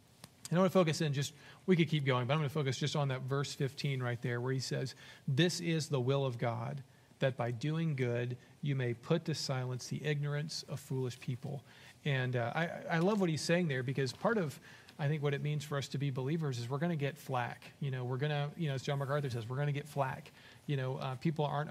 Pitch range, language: 130-155 Hz, English